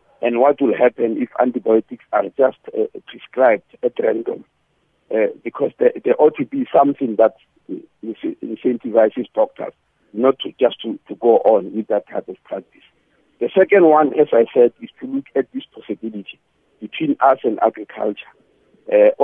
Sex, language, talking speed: male, English, 160 wpm